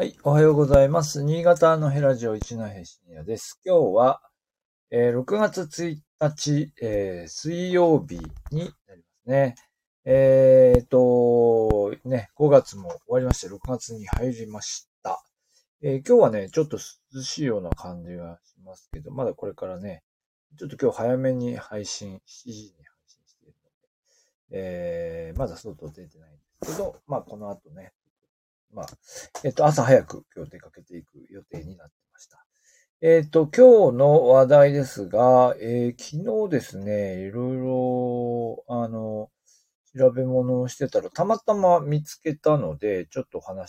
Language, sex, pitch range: Japanese, male, 110-160 Hz